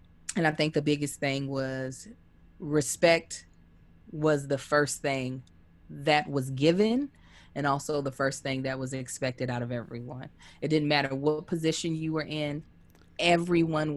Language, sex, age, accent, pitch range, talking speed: English, female, 20-39, American, 135-165 Hz, 150 wpm